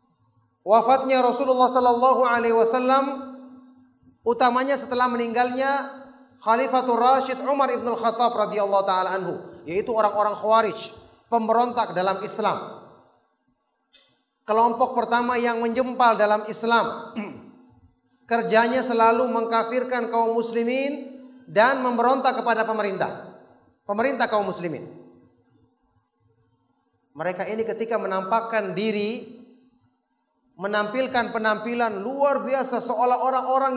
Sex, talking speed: male, 85 wpm